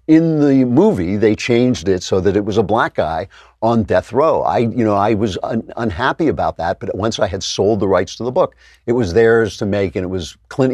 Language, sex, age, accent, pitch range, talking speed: English, male, 50-69, American, 90-115 Hz, 245 wpm